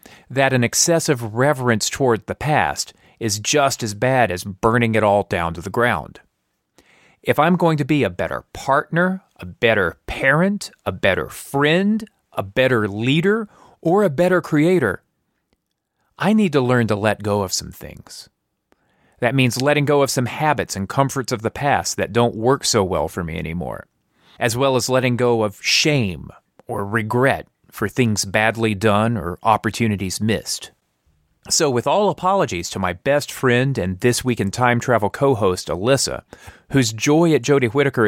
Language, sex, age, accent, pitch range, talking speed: English, male, 40-59, American, 105-140 Hz, 170 wpm